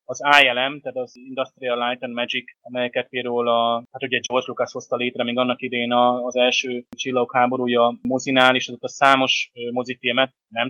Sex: male